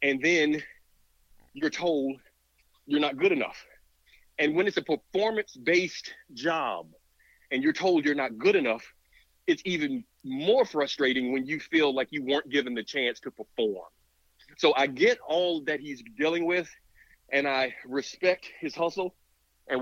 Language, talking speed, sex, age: English, 155 wpm, male, 40-59